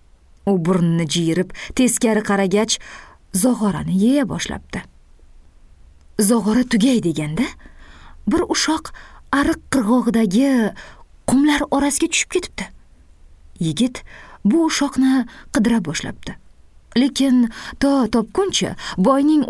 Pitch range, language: 185-285 Hz, English